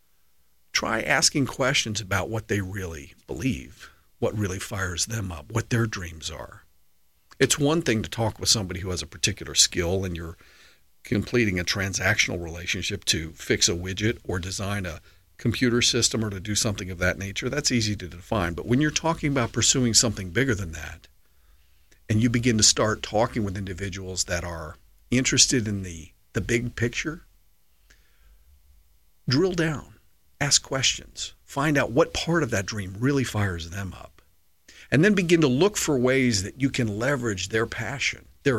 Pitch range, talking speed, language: 85-120 Hz, 170 wpm, English